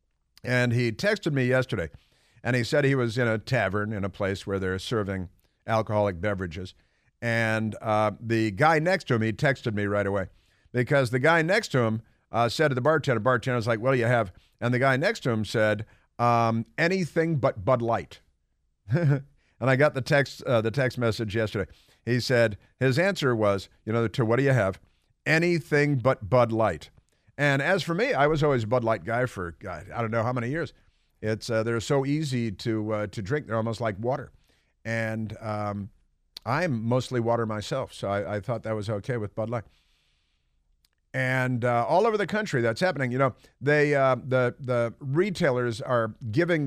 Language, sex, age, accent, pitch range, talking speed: English, male, 50-69, American, 105-130 Hz, 195 wpm